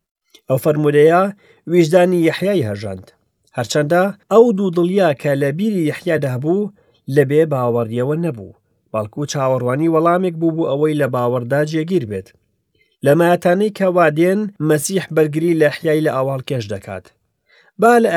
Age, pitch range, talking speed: 40-59, 120-180 Hz, 115 wpm